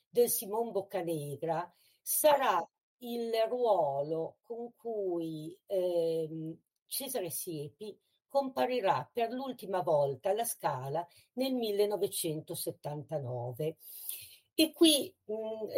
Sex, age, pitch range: female, 50-69, 165-230 Hz